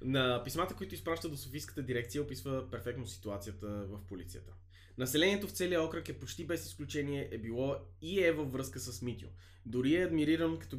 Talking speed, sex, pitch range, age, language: 180 wpm, male, 95-145 Hz, 20-39, Bulgarian